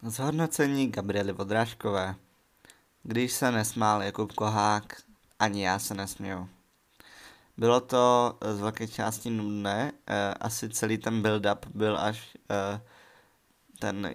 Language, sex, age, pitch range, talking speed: Czech, male, 20-39, 100-115 Hz, 105 wpm